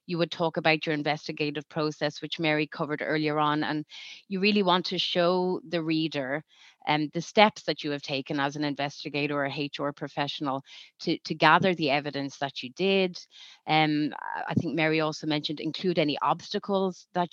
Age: 30-49